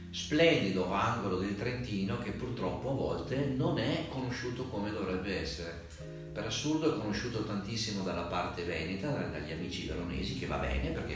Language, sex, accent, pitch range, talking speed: Italian, male, native, 90-120 Hz, 155 wpm